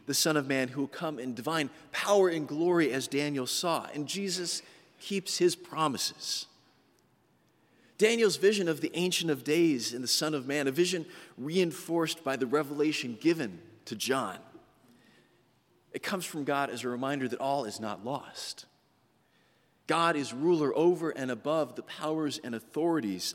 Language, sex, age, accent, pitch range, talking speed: English, male, 40-59, American, 135-180 Hz, 160 wpm